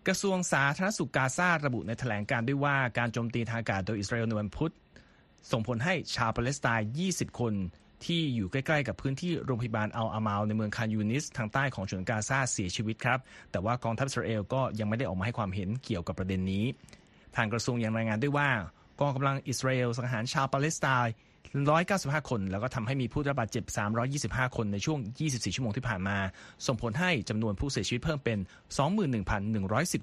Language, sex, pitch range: Thai, male, 110-135 Hz